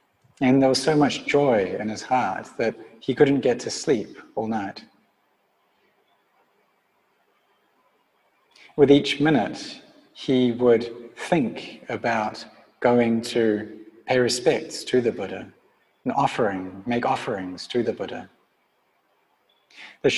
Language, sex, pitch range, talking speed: English, male, 110-135 Hz, 115 wpm